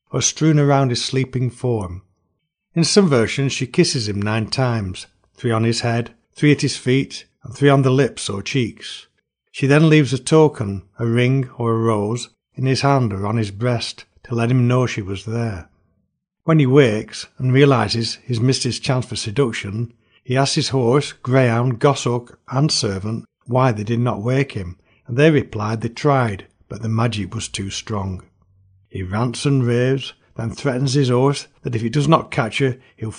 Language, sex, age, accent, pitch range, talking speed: English, male, 60-79, British, 110-140 Hz, 190 wpm